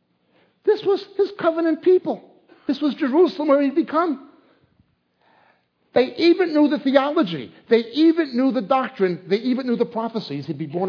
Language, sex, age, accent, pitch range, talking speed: English, male, 60-79, American, 130-205 Hz, 160 wpm